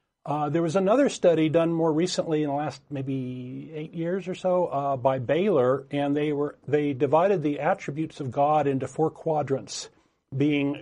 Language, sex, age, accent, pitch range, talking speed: English, male, 40-59, American, 140-175 Hz, 175 wpm